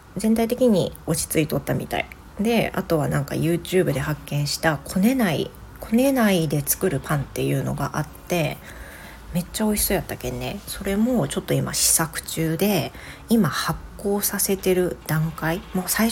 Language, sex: Japanese, female